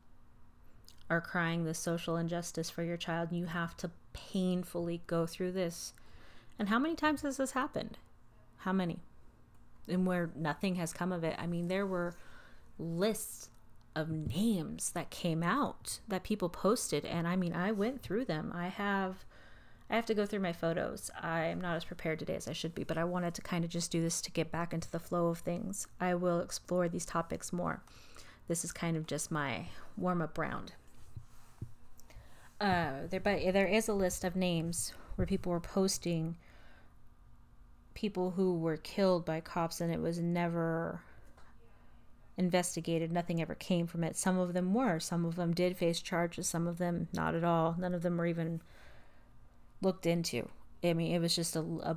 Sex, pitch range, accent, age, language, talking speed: female, 165-180 Hz, American, 30-49, English, 185 wpm